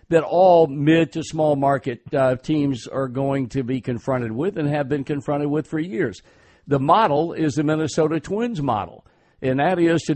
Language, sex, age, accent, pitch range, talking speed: English, male, 60-79, American, 130-155 Hz, 175 wpm